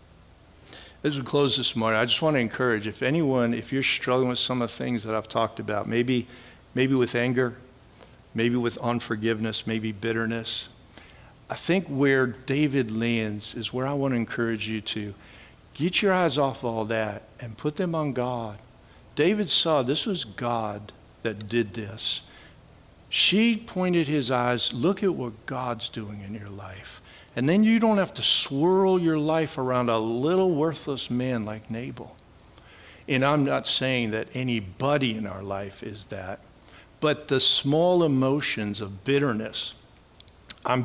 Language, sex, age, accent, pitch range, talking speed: English, male, 60-79, American, 110-135 Hz, 165 wpm